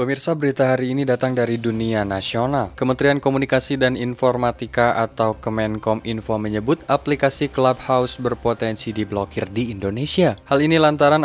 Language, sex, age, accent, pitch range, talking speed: Indonesian, male, 20-39, native, 105-130 Hz, 135 wpm